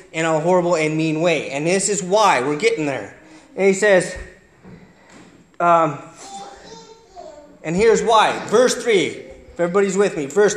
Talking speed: 155 wpm